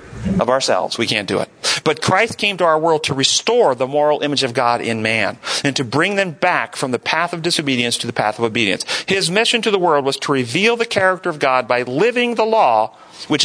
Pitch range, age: 135-185 Hz, 40-59